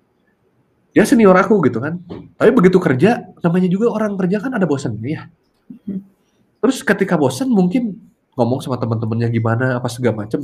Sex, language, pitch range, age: male, Indonesian, 125-195 Hz, 30-49